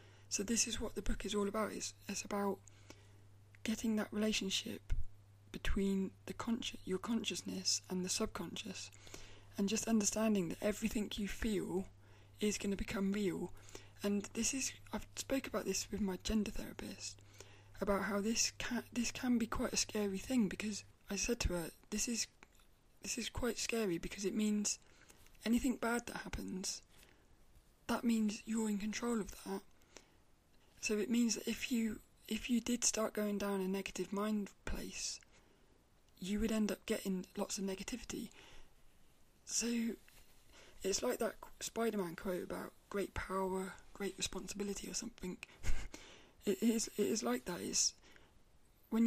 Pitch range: 185-225 Hz